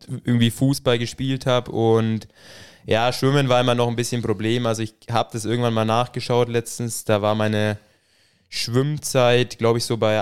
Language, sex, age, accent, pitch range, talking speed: German, male, 20-39, German, 110-130 Hz, 170 wpm